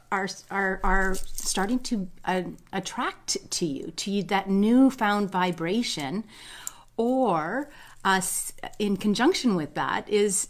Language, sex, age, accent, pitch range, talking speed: English, female, 30-49, American, 175-225 Hz, 130 wpm